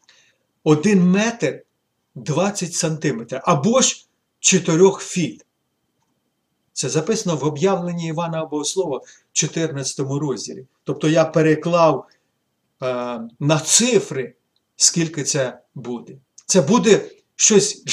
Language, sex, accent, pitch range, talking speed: Ukrainian, male, native, 135-195 Hz, 95 wpm